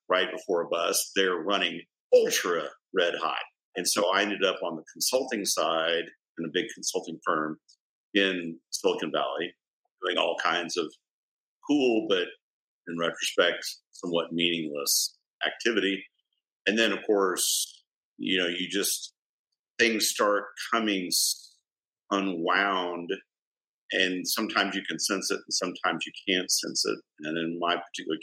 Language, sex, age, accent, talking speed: English, male, 50-69, American, 140 wpm